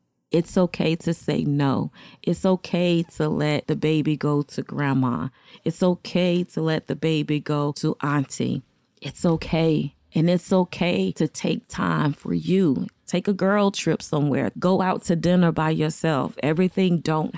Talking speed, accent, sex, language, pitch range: 160 wpm, American, female, English, 145-175 Hz